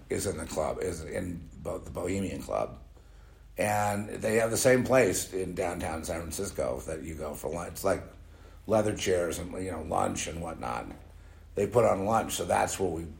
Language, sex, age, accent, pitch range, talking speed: English, male, 70-89, American, 80-95 Hz, 195 wpm